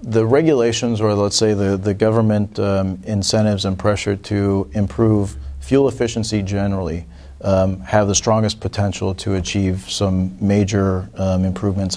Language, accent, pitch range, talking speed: English, American, 95-110 Hz, 140 wpm